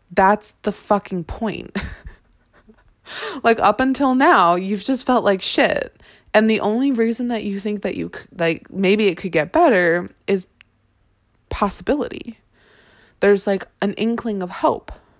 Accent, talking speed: American, 140 wpm